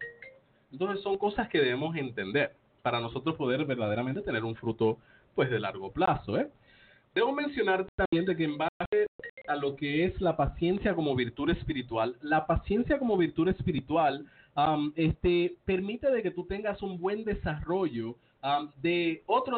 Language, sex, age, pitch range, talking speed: English, male, 30-49, 130-200 Hz, 160 wpm